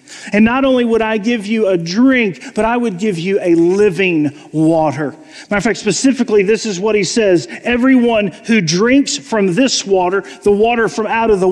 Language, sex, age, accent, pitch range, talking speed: English, male, 40-59, American, 210-270 Hz, 200 wpm